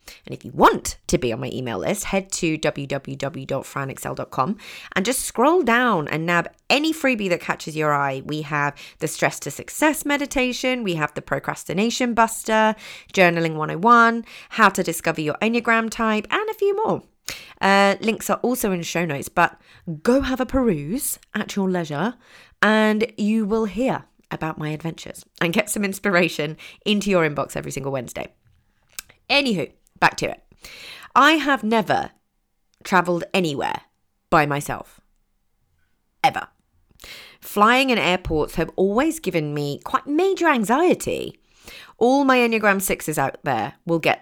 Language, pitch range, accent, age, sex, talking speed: English, 160-230 Hz, British, 20-39, female, 150 wpm